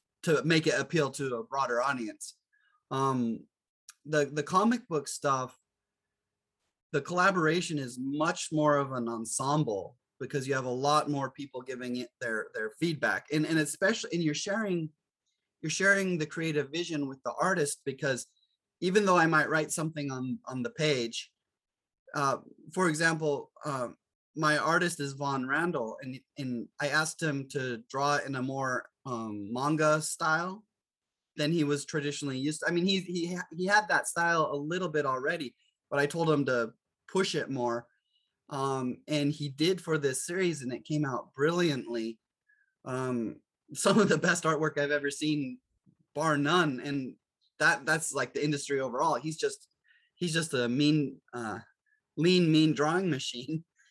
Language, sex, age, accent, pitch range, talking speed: English, male, 30-49, American, 135-165 Hz, 165 wpm